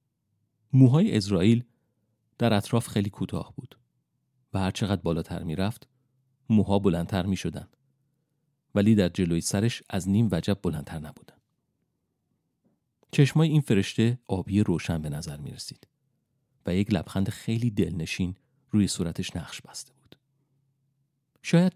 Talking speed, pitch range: 120 wpm, 95-125 Hz